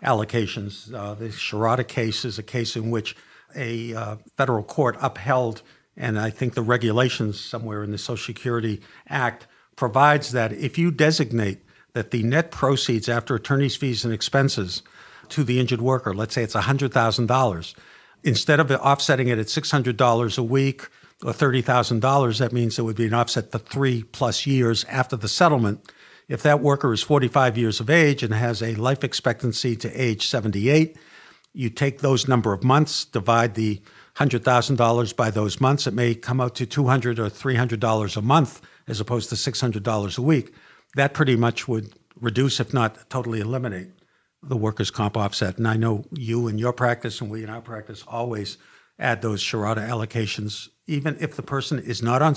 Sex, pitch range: male, 110-135 Hz